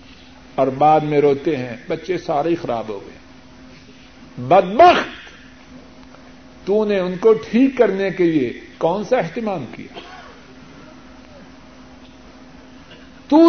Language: Urdu